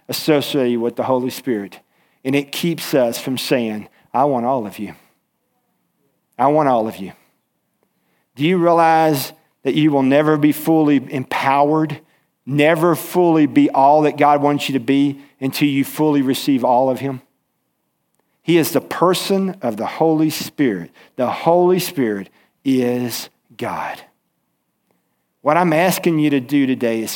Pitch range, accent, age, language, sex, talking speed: 135-200 Hz, American, 50-69, English, male, 150 wpm